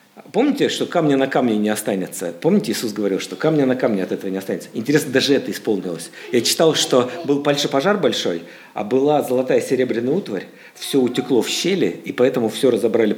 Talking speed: 190 wpm